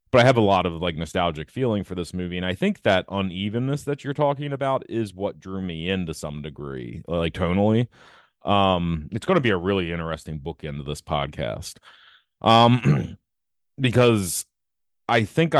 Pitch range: 90-115 Hz